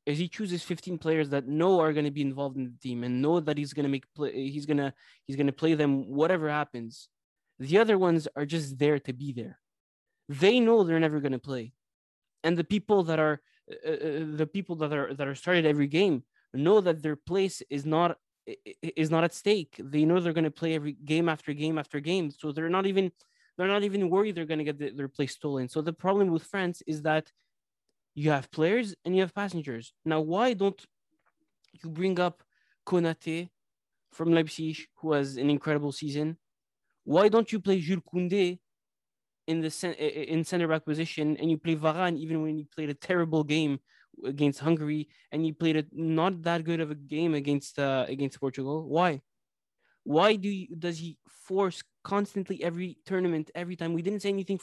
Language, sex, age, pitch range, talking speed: English, male, 20-39, 145-180 Hz, 205 wpm